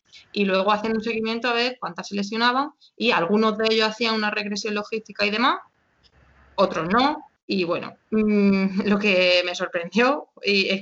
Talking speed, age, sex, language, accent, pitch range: 160 wpm, 20-39, female, Spanish, Spanish, 185-235 Hz